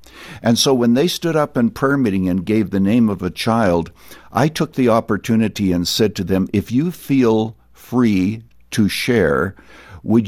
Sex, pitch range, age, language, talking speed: male, 90-120 Hz, 60-79, English, 180 wpm